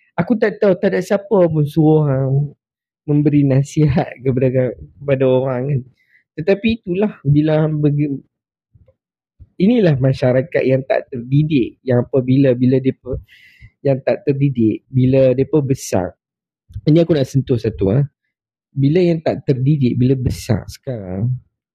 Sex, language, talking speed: male, Malay, 125 wpm